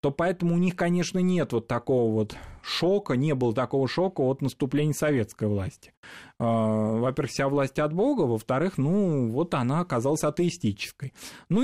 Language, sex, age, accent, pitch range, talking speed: Russian, male, 20-39, native, 115-150 Hz, 155 wpm